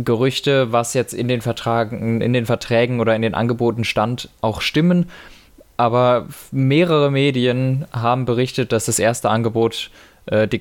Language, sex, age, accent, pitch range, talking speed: German, male, 20-39, German, 115-140 Hz, 155 wpm